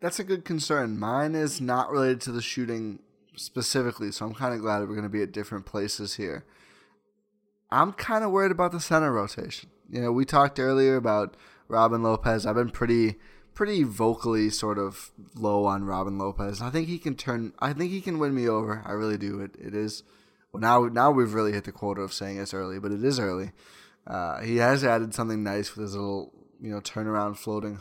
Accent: American